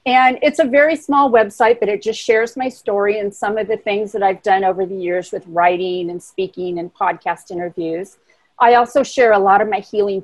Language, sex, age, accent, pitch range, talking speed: English, female, 40-59, American, 180-235 Hz, 225 wpm